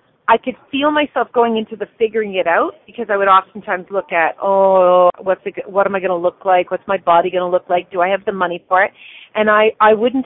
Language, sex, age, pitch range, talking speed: English, female, 40-59, 190-260 Hz, 255 wpm